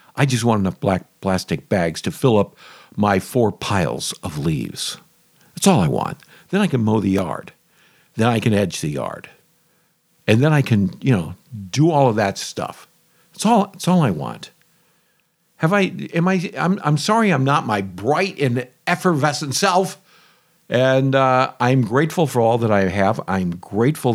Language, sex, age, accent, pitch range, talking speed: English, male, 50-69, American, 115-160 Hz, 180 wpm